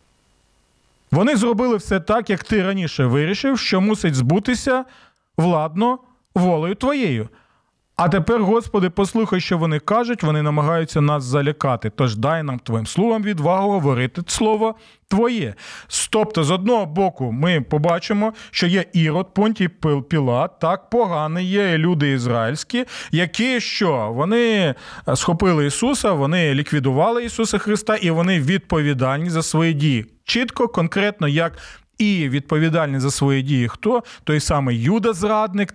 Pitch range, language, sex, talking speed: 150-210 Hz, Ukrainian, male, 130 wpm